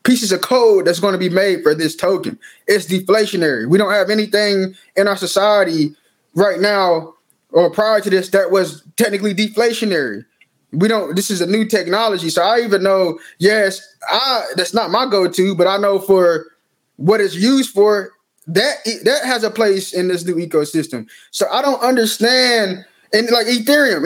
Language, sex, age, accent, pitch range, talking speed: English, male, 20-39, American, 190-235 Hz, 175 wpm